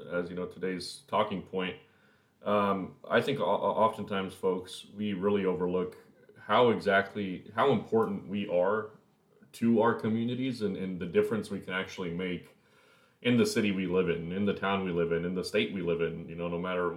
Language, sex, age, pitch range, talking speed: English, male, 30-49, 90-105 Hz, 185 wpm